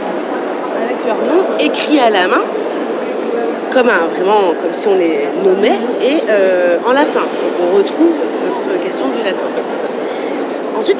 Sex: female